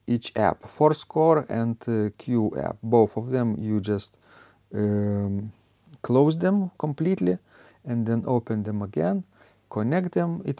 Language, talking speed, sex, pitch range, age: English, 135 wpm, male, 105-130 Hz, 50-69